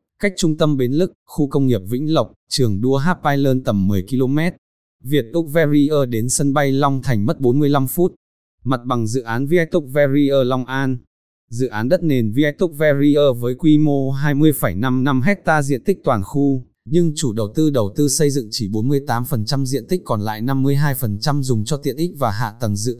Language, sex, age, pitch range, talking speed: Vietnamese, male, 20-39, 120-145 Hz, 200 wpm